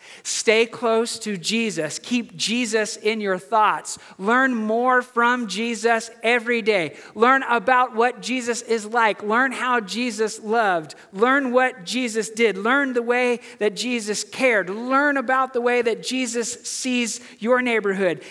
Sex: male